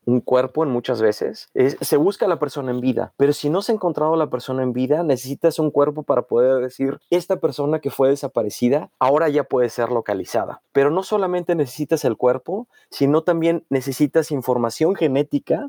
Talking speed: 195 wpm